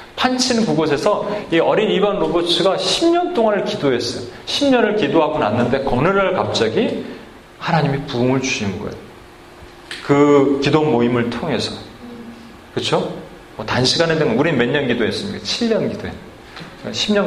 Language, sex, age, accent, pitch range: Korean, male, 30-49, native, 145-200 Hz